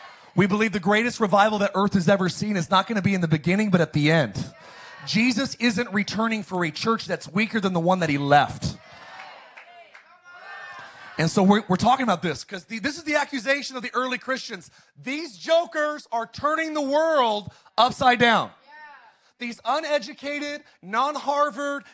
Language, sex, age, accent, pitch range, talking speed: English, male, 30-49, American, 205-295 Hz, 170 wpm